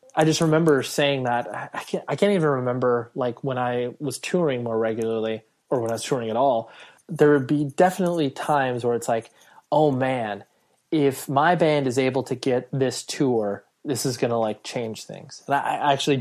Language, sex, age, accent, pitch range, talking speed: English, male, 20-39, American, 120-140 Hz, 200 wpm